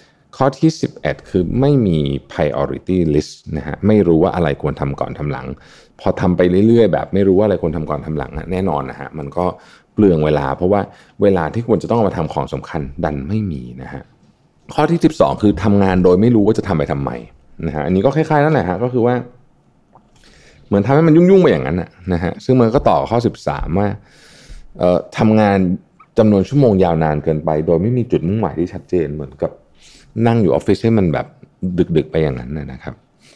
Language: Thai